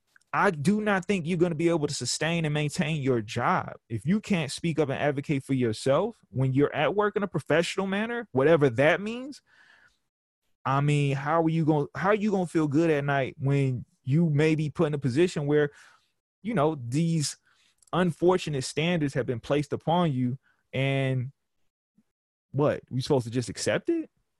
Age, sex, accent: 20-39, male, American